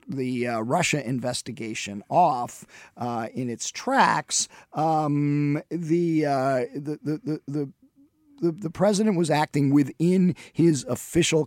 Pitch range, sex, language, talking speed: 120-165 Hz, male, English, 120 wpm